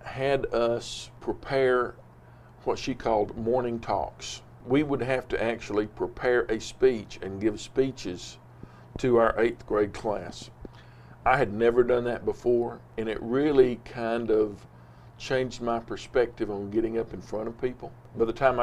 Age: 50-69